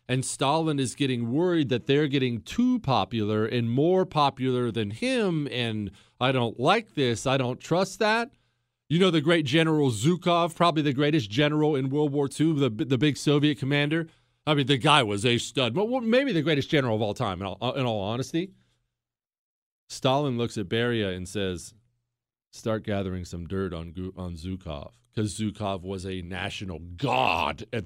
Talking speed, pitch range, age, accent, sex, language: 175 wpm, 110-150 Hz, 40-59, American, male, English